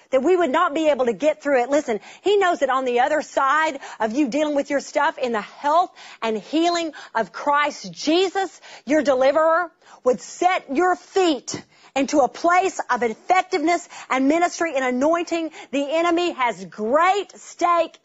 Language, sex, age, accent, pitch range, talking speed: English, female, 40-59, American, 245-330 Hz, 175 wpm